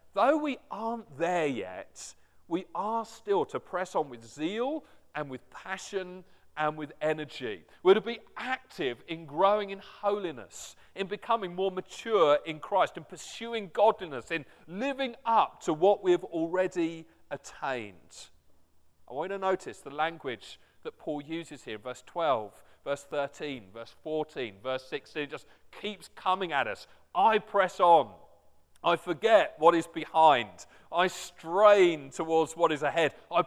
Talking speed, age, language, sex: 150 wpm, 40-59, English, male